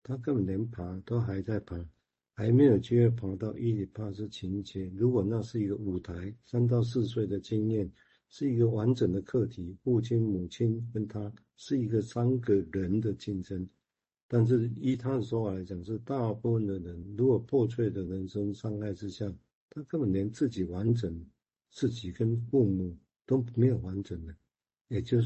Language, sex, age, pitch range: Chinese, male, 50-69, 95-115 Hz